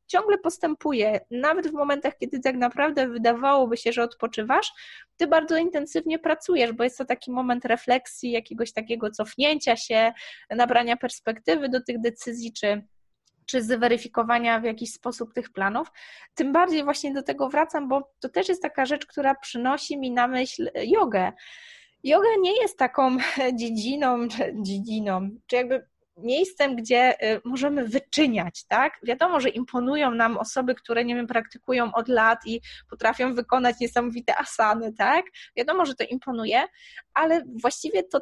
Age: 20-39